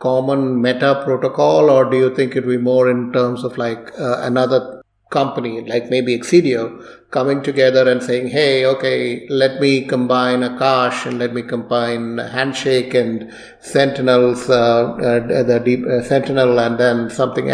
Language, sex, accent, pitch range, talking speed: English, male, Indian, 120-135 Hz, 165 wpm